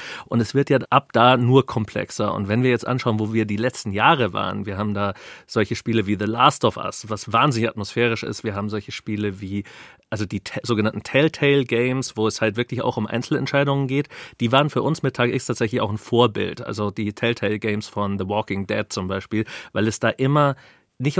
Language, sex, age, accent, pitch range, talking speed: German, male, 30-49, German, 105-130 Hz, 220 wpm